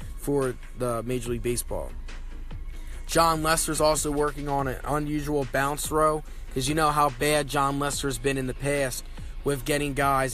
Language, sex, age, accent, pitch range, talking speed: English, male, 20-39, American, 120-150 Hz, 165 wpm